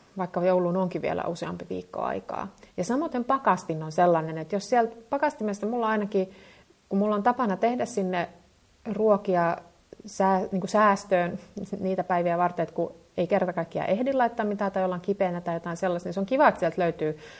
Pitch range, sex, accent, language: 175-215 Hz, female, native, Finnish